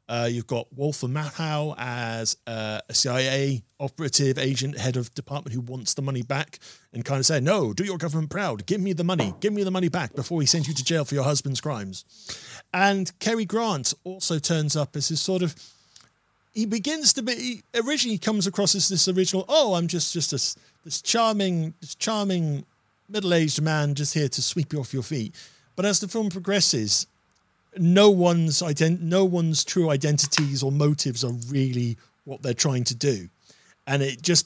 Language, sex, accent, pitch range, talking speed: English, male, British, 135-185 Hz, 195 wpm